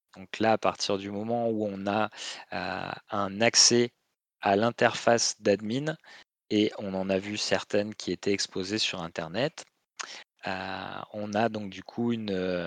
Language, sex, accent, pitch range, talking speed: French, male, French, 95-115 Hz, 155 wpm